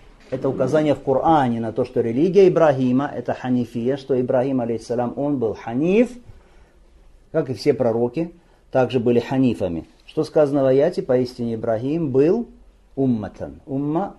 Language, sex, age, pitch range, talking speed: Russian, male, 50-69, 115-155 Hz, 140 wpm